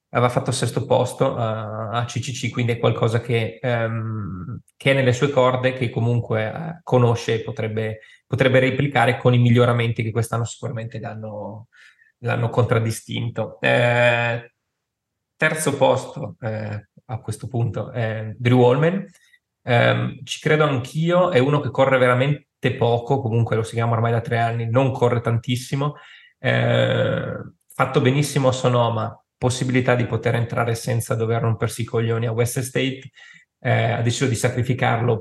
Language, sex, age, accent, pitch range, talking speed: Italian, male, 20-39, native, 115-130 Hz, 145 wpm